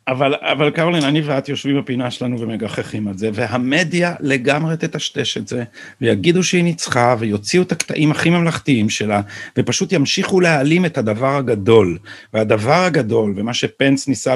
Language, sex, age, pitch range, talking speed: Hebrew, male, 50-69, 125-165 Hz, 150 wpm